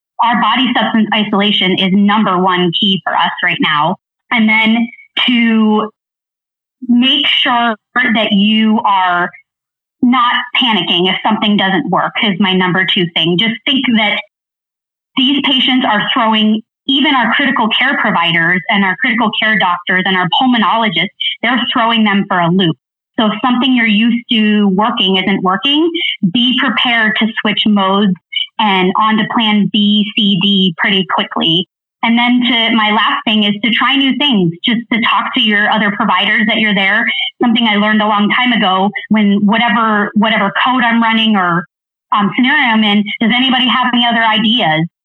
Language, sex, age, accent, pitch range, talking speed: English, female, 30-49, American, 205-240 Hz, 165 wpm